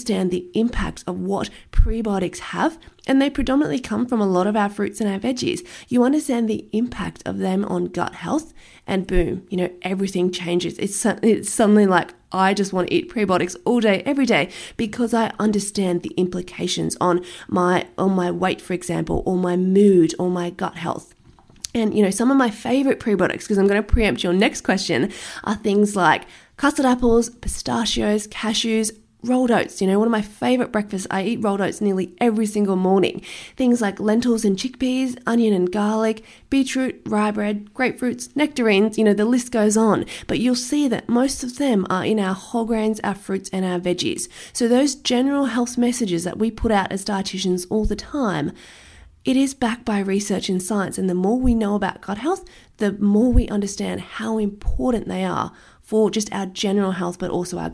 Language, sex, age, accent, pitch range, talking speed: English, female, 20-39, Australian, 190-235 Hz, 195 wpm